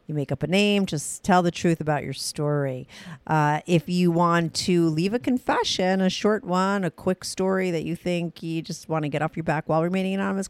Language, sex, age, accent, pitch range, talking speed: English, female, 40-59, American, 155-215 Hz, 230 wpm